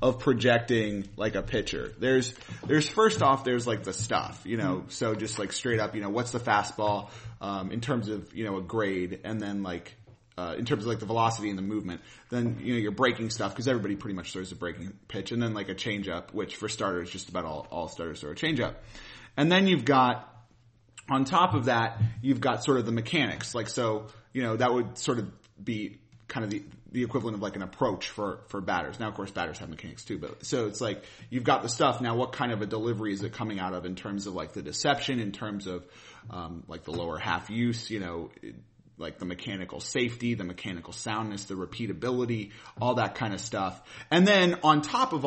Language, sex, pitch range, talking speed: English, male, 100-125 Hz, 230 wpm